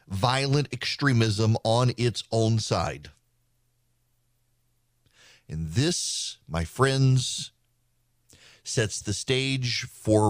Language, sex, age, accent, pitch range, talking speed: English, male, 40-59, American, 105-125 Hz, 80 wpm